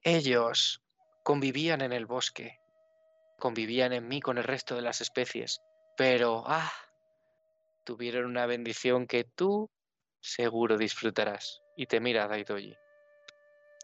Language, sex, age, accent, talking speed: Spanish, male, 20-39, Spanish, 115 wpm